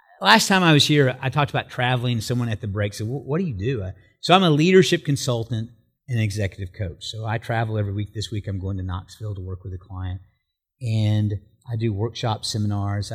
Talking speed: 215 wpm